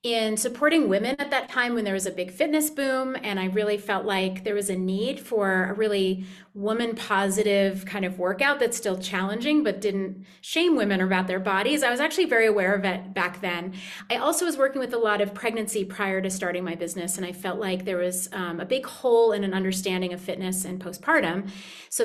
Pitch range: 195-255 Hz